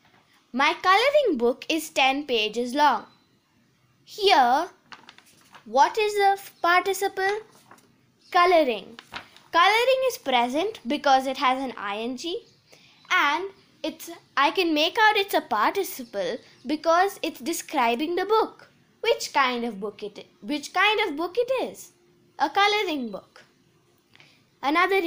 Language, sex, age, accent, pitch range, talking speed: English, female, 20-39, Indian, 255-380 Hz, 120 wpm